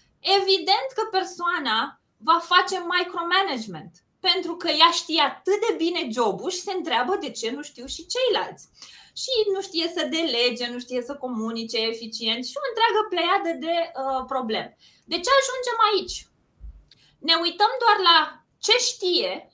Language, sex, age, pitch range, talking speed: Romanian, female, 20-39, 235-355 Hz, 155 wpm